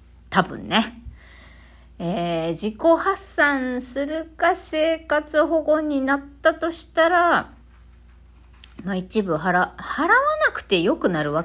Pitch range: 160-260 Hz